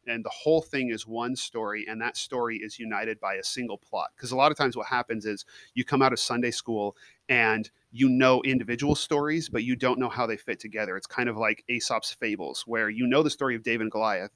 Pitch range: 110-130 Hz